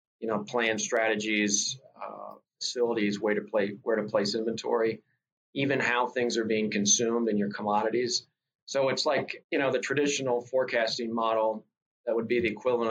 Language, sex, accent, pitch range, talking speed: English, male, American, 110-130 Hz, 165 wpm